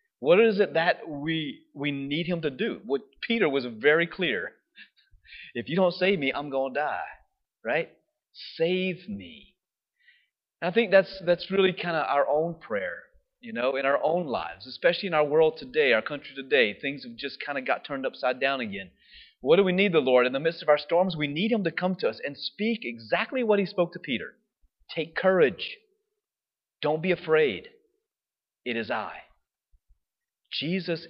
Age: 30-49